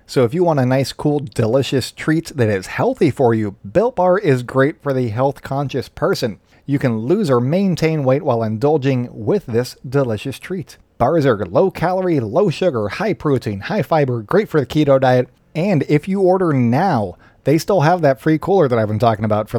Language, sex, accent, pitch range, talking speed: English, male, American, 110-150 Hz, 205 wpm